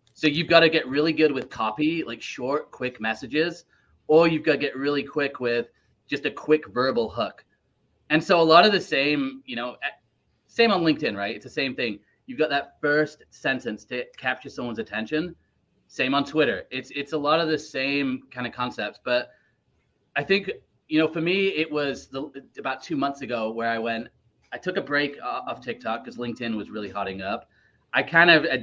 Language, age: English, 30-49